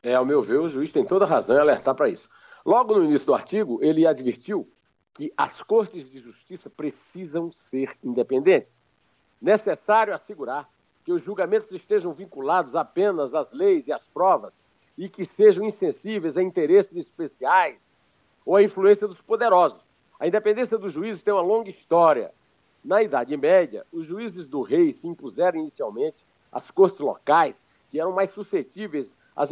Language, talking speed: Portuguese, 160 wpm